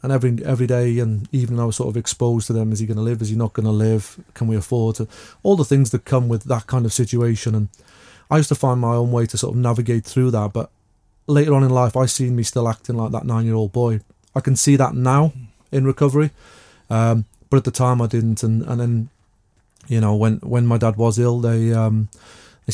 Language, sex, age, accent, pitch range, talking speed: English, male, 30-49, British, 110-125 Hz, 255 wpm